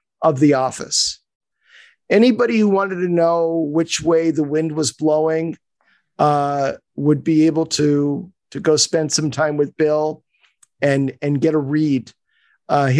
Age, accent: 50-69, American